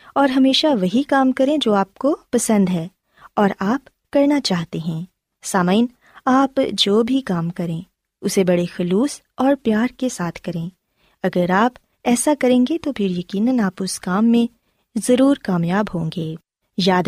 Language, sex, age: Urdu, female, 20-39